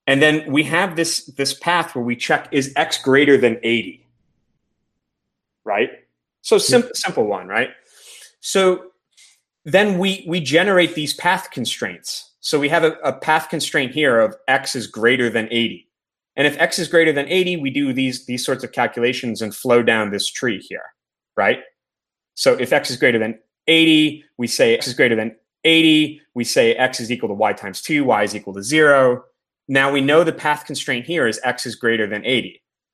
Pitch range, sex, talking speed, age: 120-155 Hz, male, 190 wpm, 30-49